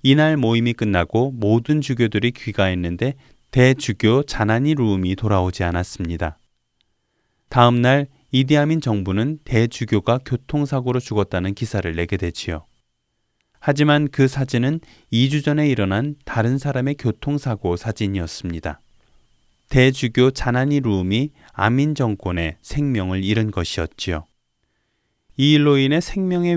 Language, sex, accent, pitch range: Korean, male, native, 95-140 Hz